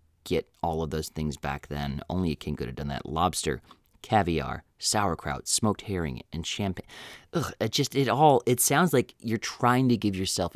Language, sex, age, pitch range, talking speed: English, male, 30-49, 75-100 Hz, 180 wpm